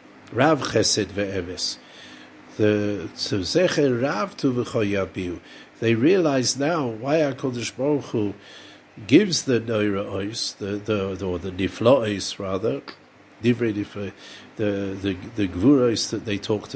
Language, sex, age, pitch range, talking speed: English, male, 60-79, 100-130 Hz, 105 wpm